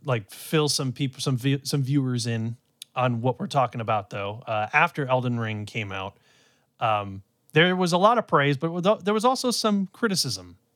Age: 30-49